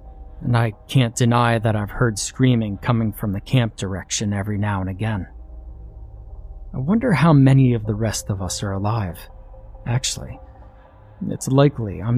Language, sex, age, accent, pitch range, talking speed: English, male, 30-49, American, 105-130 Hz, 160 wpm